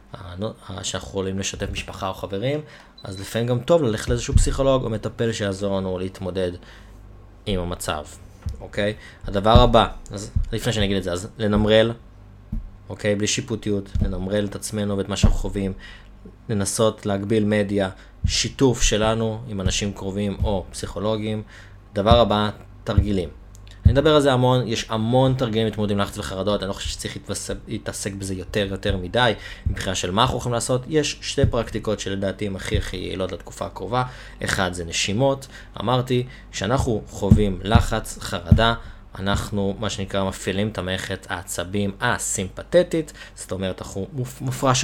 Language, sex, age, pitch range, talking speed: Hebrew, male, 20-39, 95-115 Hz, 145 wpm